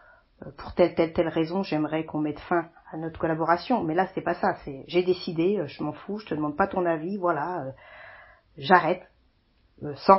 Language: French